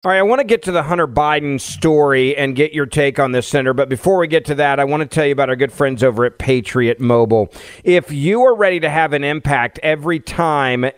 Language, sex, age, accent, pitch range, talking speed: English, male, 40-59, American, 140-185 Hz, 255 wpm